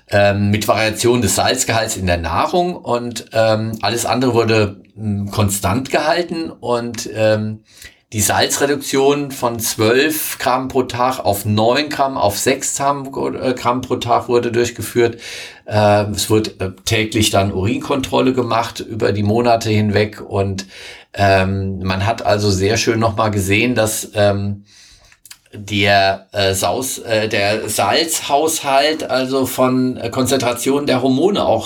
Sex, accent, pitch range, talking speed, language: male, German, 105-130 Hz, 125 wpm, German